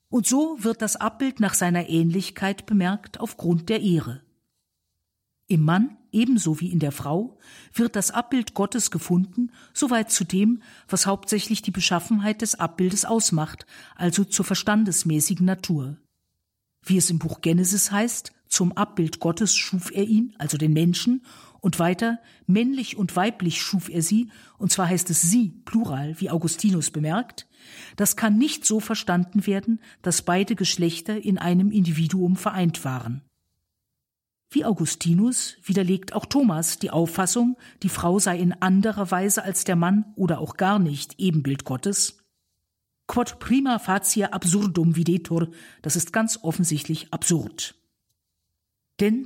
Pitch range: 165-215 Hz